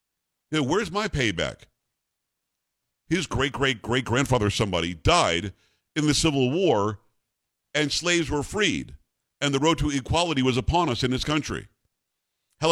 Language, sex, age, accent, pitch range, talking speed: English, male, 50-69, American, 110-145 Hz, 125 wpm